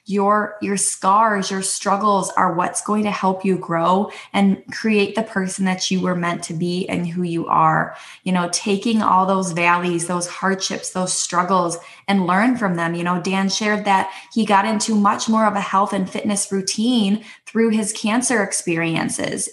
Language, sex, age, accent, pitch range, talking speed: English, female, 20-39, American, 180-215 Hz, 185 wpm